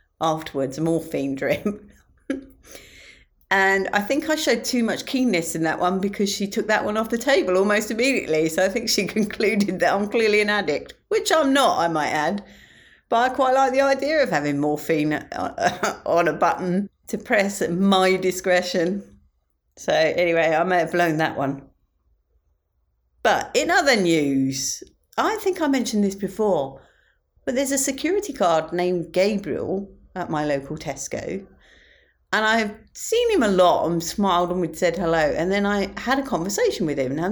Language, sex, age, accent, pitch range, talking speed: English, female, 40-59, British, 165-260 Hz, 175 wpm